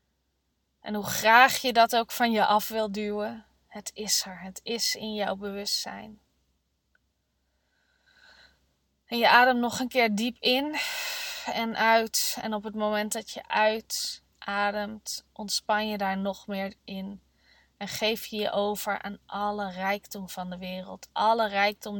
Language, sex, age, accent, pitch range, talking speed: Dutch, female, 20-39, Dutch, 195-220 Hz, 150 wpm